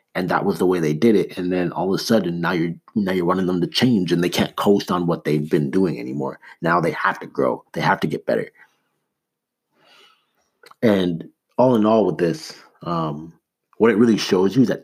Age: 30-49